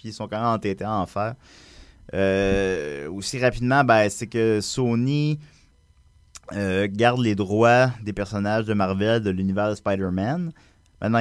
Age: 30-49